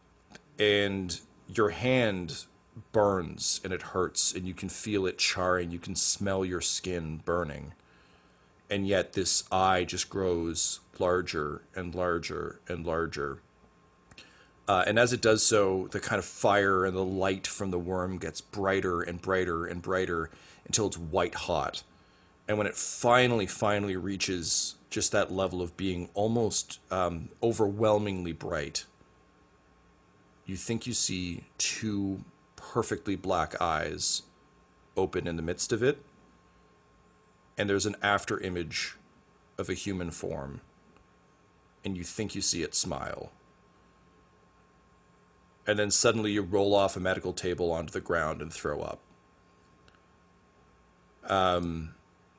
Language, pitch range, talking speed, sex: English, 85-100 Hz, 135 wpm, male